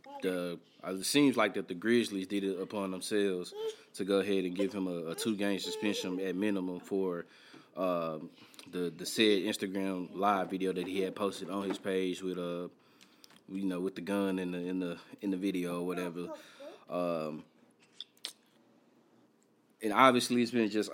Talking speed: 175 wpm